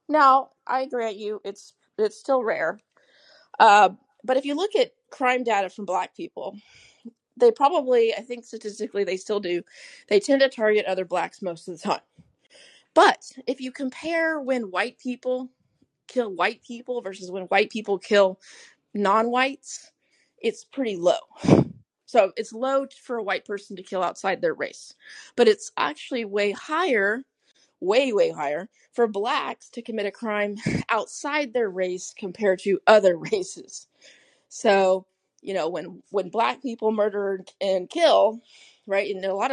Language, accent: English, American